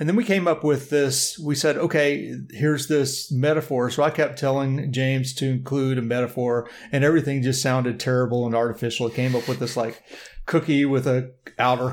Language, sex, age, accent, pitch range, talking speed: English, male, 40-59, American, 125-150 Hz, 195 wpm